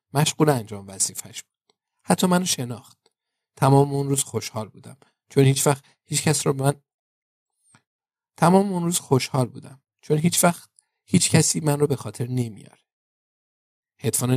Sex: male